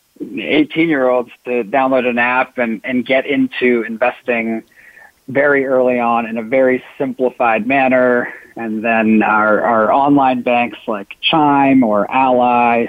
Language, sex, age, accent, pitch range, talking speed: English, male, 40-59, American, 115-135 Hz, 130 wpm